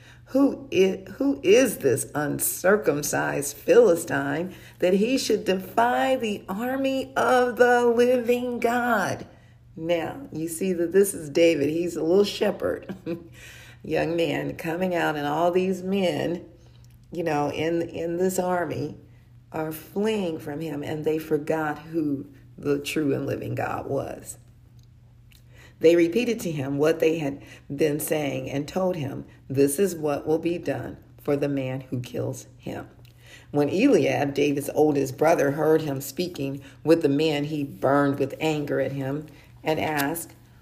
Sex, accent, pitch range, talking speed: female, American, 140-175 Hz, 145 wpm